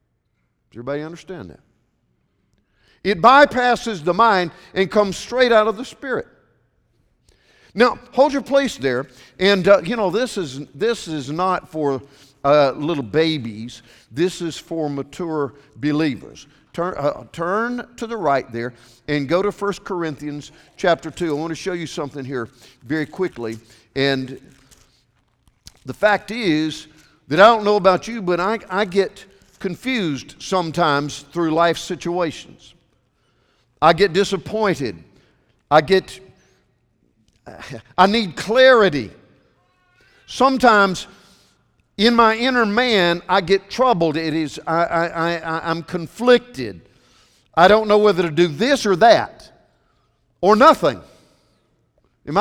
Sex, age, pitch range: male, 50-69, 150-220 Hz